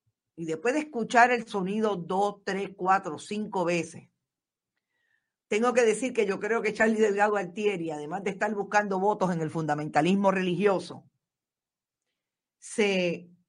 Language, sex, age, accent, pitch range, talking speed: Spanish, female, 50-69, American, 175-230 Hz, 140 wpm